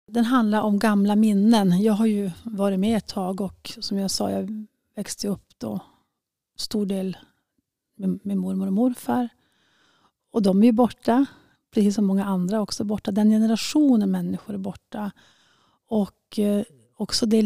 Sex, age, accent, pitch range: female, 30-49, native, 195-220 Hz